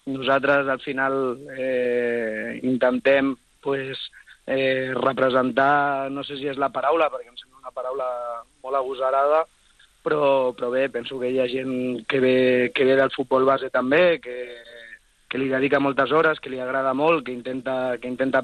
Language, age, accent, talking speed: Spanish, 30-49, Spanish, 165 wpm